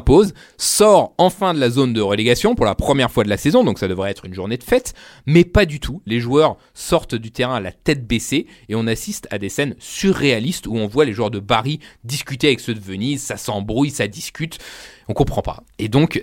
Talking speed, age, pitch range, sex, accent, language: 235 wpm, 30-49, 110-145 Hz, male, French, French